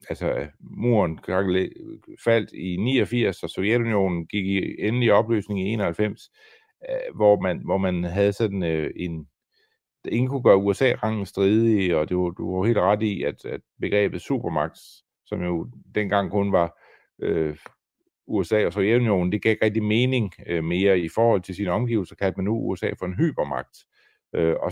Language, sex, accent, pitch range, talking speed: Danish, male, native, 90-120 Hz, 160 wpm